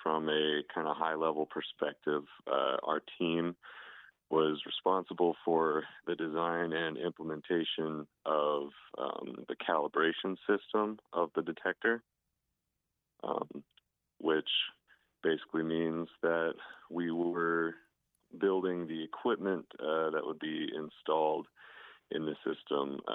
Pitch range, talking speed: 75-85 Hz, 110 wpm